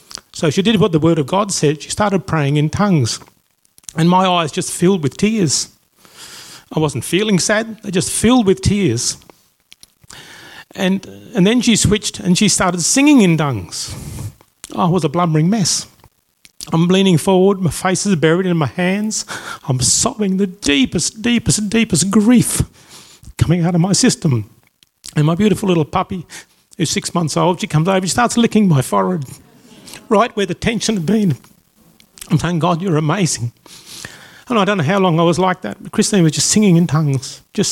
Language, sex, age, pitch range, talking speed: English, male, 40-59, 160-200 Hz, 180 wpm